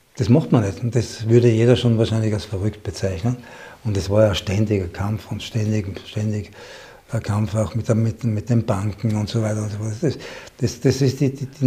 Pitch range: 110-125 Hz